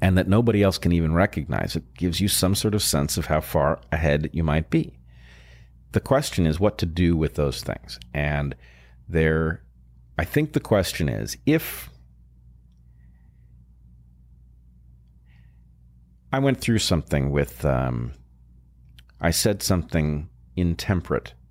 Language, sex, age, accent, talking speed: English, male, 40-59, American, 135 wpm